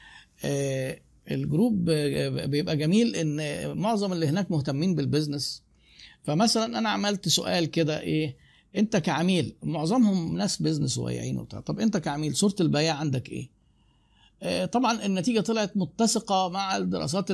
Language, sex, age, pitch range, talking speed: Arabic, male, 50-69, 140-185 Hz, 120 wpm